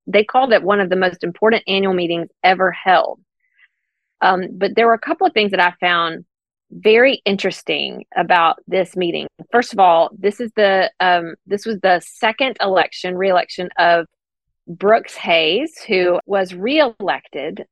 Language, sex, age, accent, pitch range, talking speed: English, female, 30-49, American, 175-205 Hz, 160 wpm